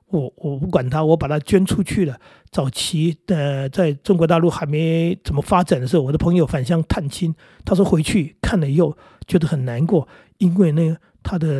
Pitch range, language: 150-180 Hz, Chinese